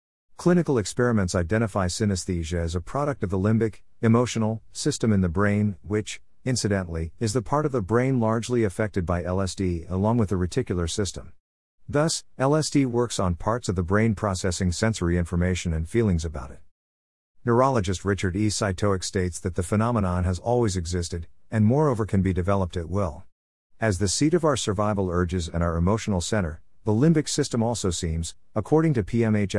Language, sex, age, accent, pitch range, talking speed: English, male, 50-69, American, 90-110 Hz, 170 wpm